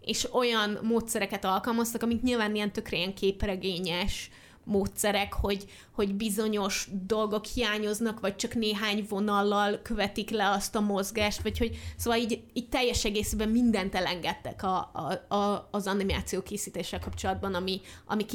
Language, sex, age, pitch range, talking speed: Hungarian, female, 20-39, 190-225 Hz, 135 wpm